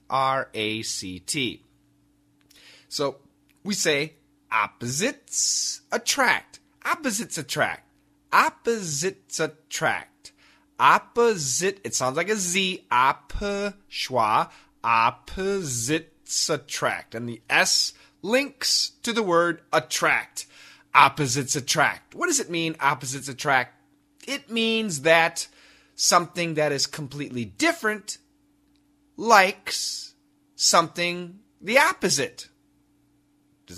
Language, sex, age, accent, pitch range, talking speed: English, male, 30-49, American, 140-205 Hz, 90 wpm